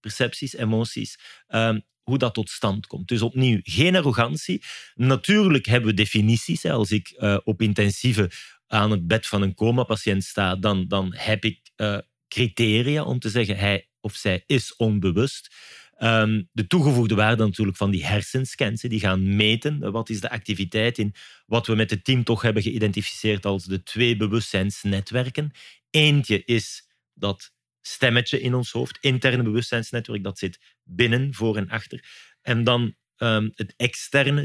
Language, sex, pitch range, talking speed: Dutch, male, 105-125 Hz, 160 wpm